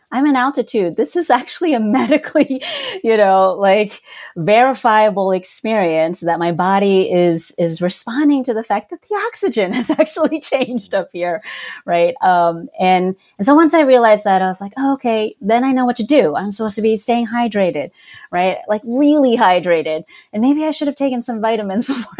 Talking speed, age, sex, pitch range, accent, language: 185 wpm, 30-49, female, 165-245 Hz, American, English